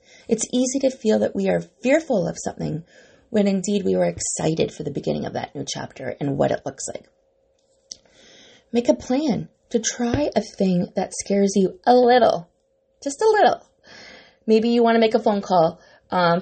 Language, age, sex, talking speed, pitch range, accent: English, 30-49, female, 185 wpm, 170-245 Hz, American